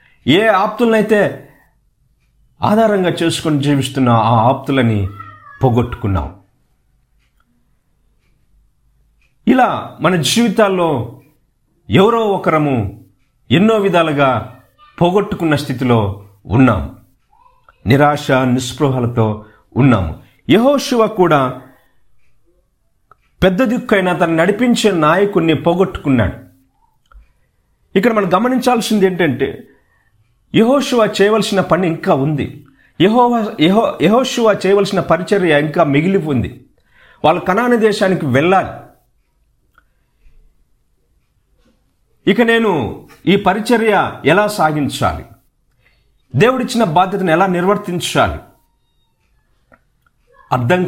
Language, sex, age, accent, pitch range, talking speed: Telugu, male, 50-69, native, 125-200 Hz, 70 wpm